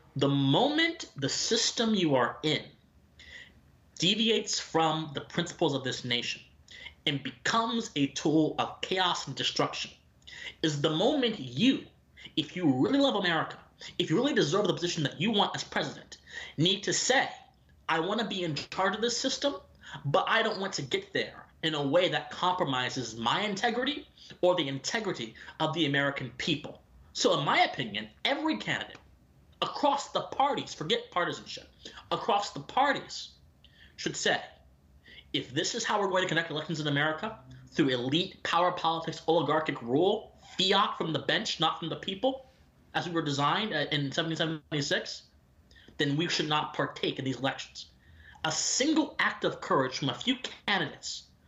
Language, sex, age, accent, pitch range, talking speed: English, male, 30-49, American, 135-200 Hz, 160 wpm